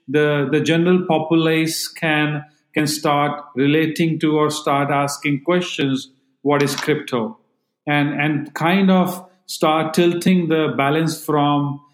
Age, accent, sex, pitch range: 40-59, Indian, male, 145-170 Hz